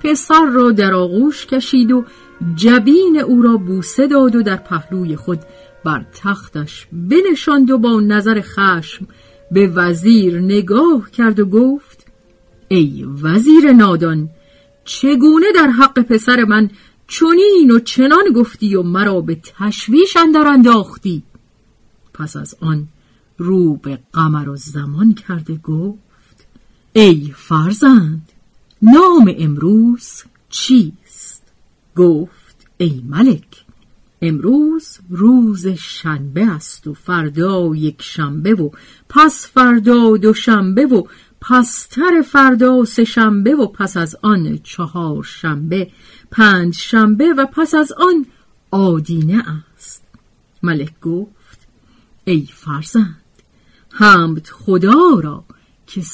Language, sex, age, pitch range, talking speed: Persian, female, 40-59, 165-250 Hz, 110 wpm